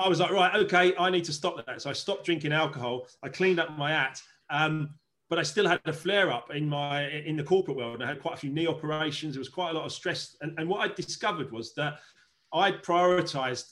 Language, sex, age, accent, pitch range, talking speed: English, male, 30-49, British, 145-175 Hz, 245 wpm